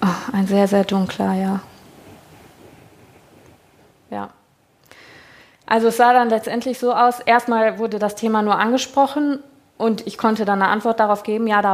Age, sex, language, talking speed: 20-39, female, German, 155 wpm